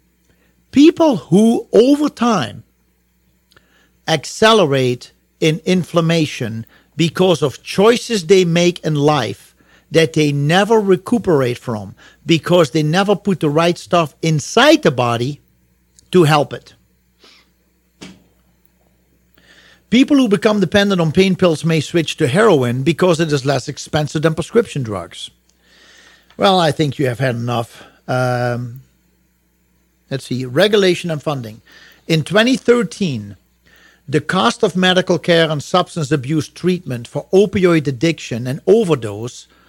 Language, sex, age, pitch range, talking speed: English, male, 50-69, 120-175 Hz, 120 wpm